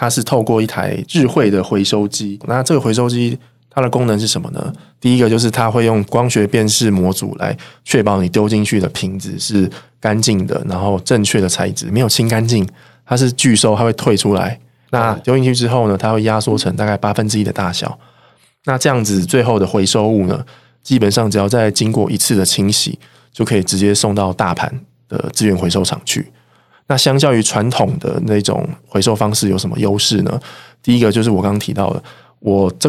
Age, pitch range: 20-39, 100-120 Hz